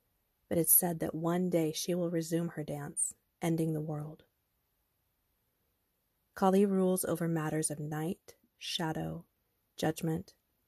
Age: 30-49